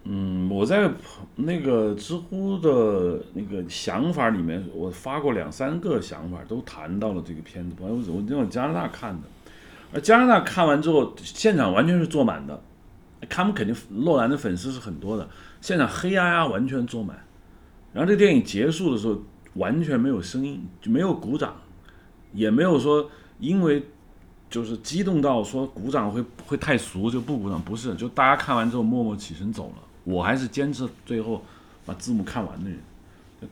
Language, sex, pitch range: Chinese, male, 90-140 Hz